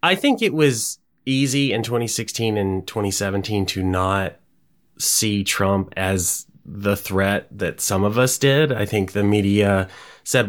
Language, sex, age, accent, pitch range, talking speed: English, male, 30-49, American, 95-125 Hz, 150 wpm